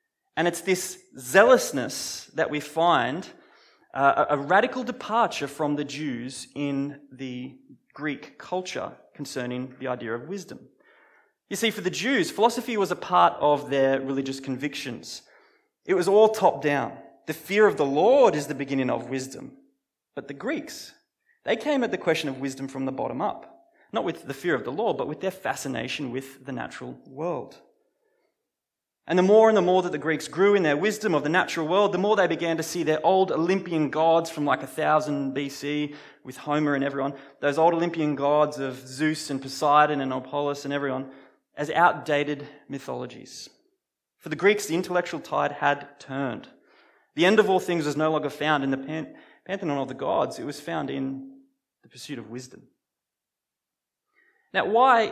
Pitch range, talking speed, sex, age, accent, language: 140-195 Hz, 175 wpm, male, 20-39, Australian, English